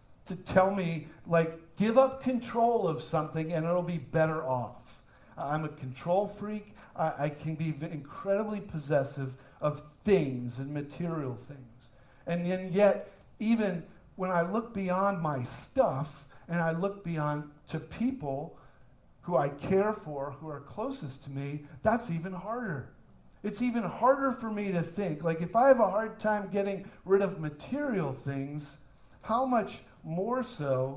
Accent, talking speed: American, 155 wpm